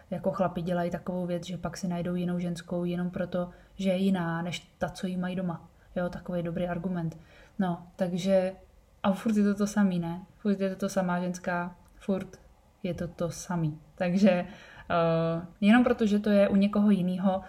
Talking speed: 185 wpm